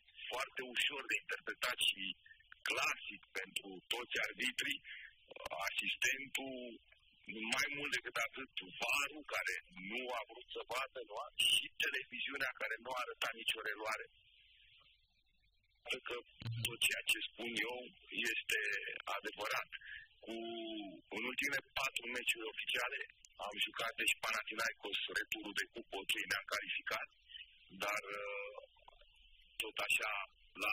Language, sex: Romanian, male